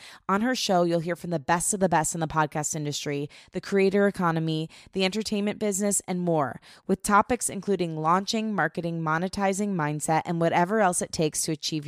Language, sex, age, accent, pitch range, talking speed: English, female, 20-39, American, 160-200 Hz, 185 wpm